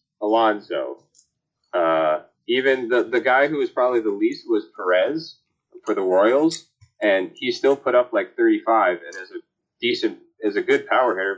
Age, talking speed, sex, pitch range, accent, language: 30-49, 170 wpm, male, 295-370 Hz, American, English